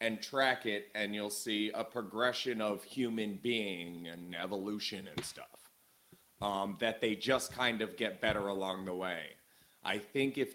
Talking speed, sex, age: 165 wpm, male, 30-49